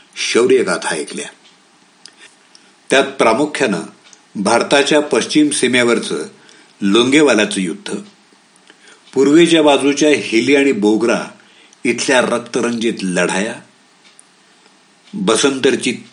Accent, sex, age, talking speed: Indian, male, 60-79, 65 wpm